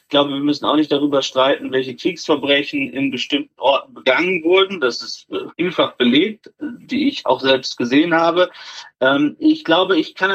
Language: German